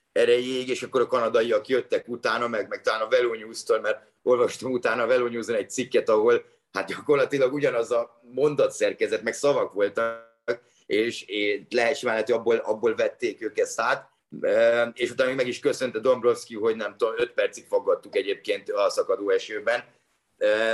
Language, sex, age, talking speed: Hungarian, male, 30-49, 160 wpm